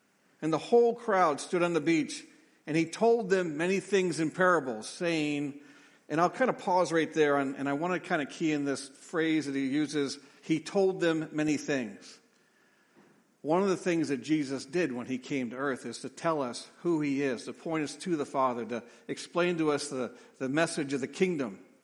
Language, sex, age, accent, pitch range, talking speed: English, male, 50-69, American, 140-175 Hz, 210 wpm